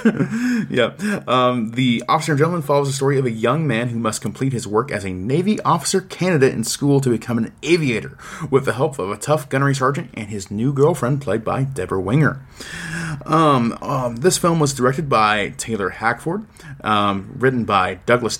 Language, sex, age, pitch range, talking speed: English, male, 30-49, 115-150 Hz, 185 wpm